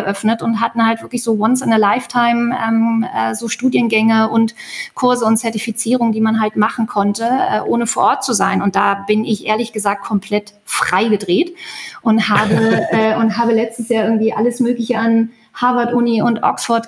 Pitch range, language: 210-240 Hz, German